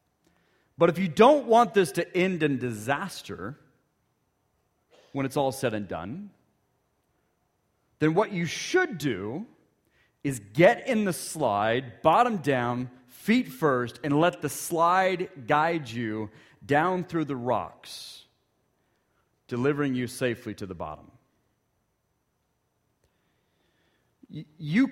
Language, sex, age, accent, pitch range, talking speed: English, male, 40-59, American, 125-175 Hz, 115 wpm